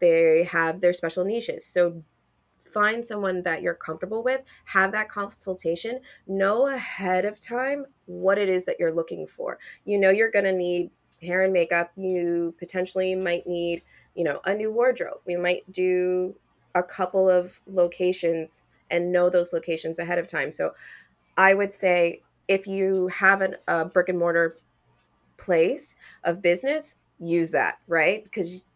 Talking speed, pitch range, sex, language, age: 160 wpm, 175-225 Hz, female, English, 20-39